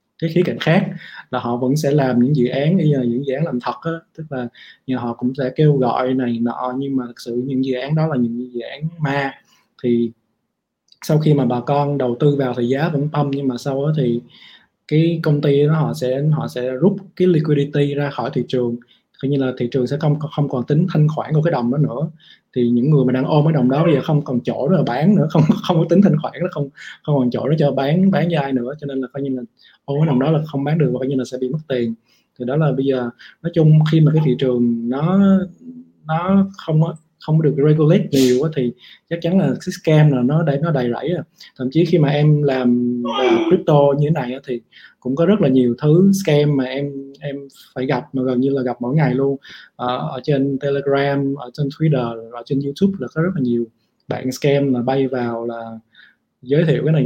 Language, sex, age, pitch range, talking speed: Vietnamese, male, 20-39, 125-160 Hz, 250 wpm